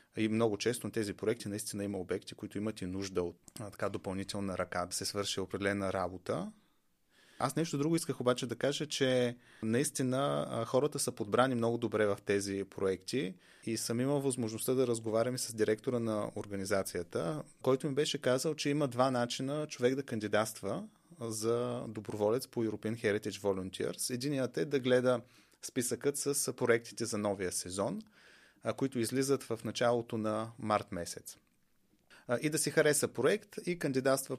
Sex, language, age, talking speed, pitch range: male, Bulgarian, 30-49, 155 wpm, 105-130 Hz